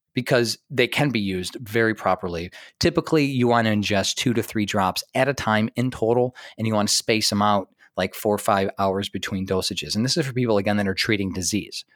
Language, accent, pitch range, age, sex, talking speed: English, American, 100-120 Hz, 30-49, male, 225 wpm